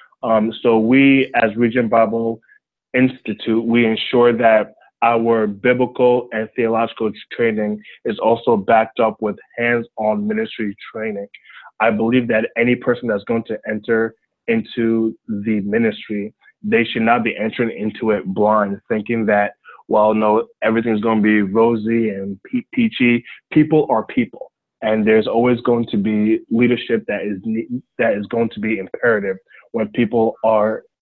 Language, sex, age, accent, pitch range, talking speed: English, male, 20-39, American, 110-125 Hz, 145 wpm